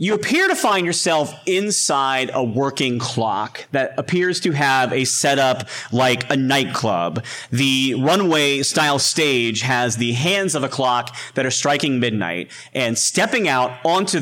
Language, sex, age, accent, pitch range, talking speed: English, male, 30-49, American, 130-190 Hz, 150 wpm